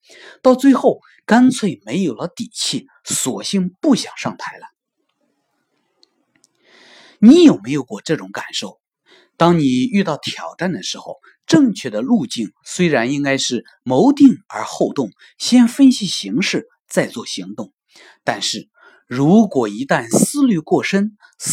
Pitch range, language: 170-275 Hz, Chinese